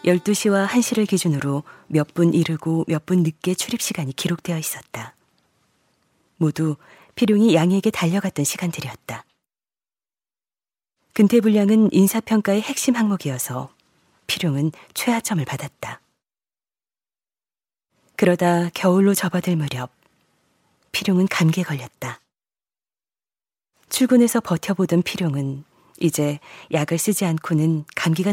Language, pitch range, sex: Korean, 155-205 Hz, female